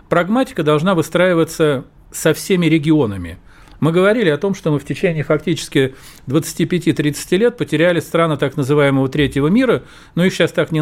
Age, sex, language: 40-59, male, Russian